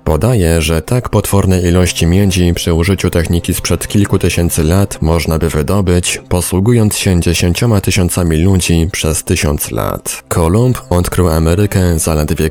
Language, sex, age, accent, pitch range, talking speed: Polish, male, 20-39, native, 80-95 Hz, 135 wpm